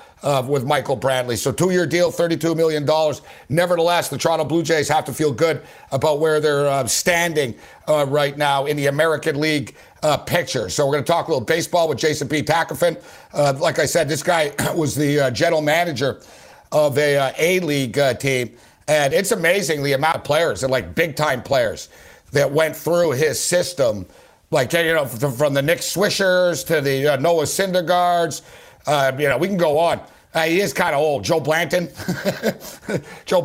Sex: male